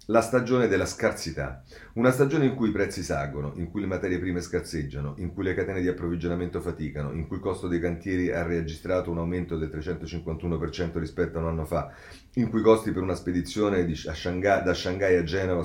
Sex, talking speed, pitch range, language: male, 200 wpm, 85-105 Hz, Italian